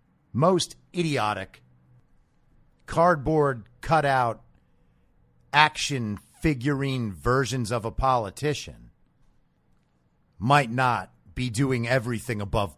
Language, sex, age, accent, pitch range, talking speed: English, male, 50-69, American, 110-145 Hz, 75 wpm